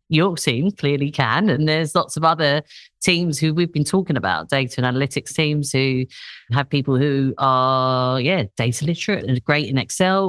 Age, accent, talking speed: 40-59, British, 180 wpm